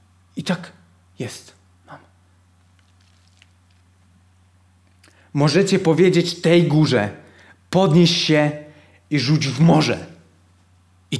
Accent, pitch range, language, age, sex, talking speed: native, 90-145 Hz, Polish, 30-49, male, 80 wpm